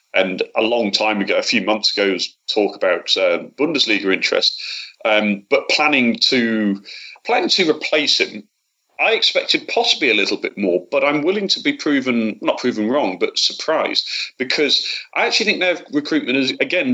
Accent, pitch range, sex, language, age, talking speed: British, 105-145 Hz, male, English, 30-49, 170 wpm